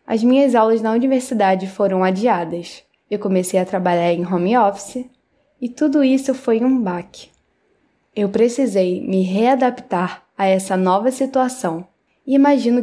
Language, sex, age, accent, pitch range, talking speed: Portuguese, female, 10-29, Brazilian, 190-250 Hz, 140 wpm